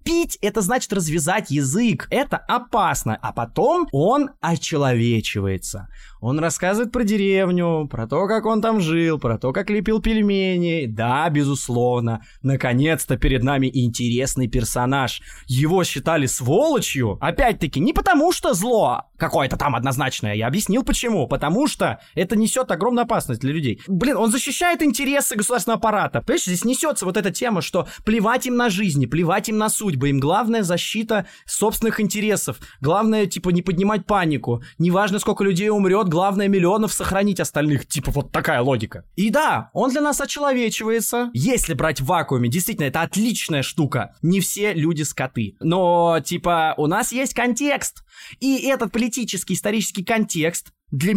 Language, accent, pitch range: Russian, native, 135-215 Hz